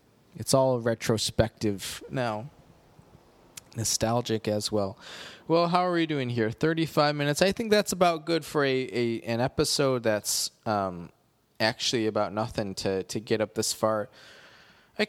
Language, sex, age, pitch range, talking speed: English, male, 20-39, 105-135 Hz, 145 wpm